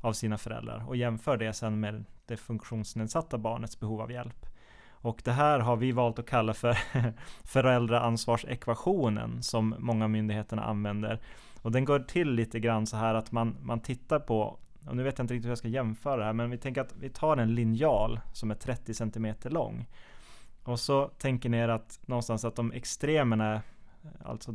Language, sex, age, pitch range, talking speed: Swedish, male, 20-39, 110-125 Hz, 190 wpm